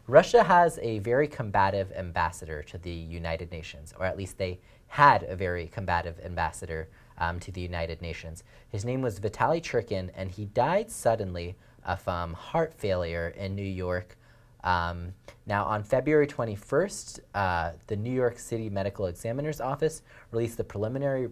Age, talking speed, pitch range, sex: 30-49, 160 wpm, 90-120 Hz, male